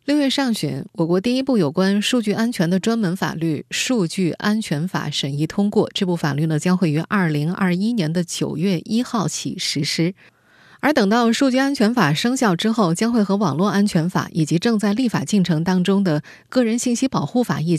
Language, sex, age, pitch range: Chinese, female, 20-39, 165-225 Hz